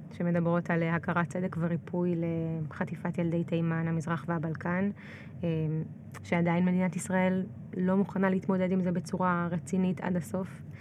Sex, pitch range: female, 170-205 Hz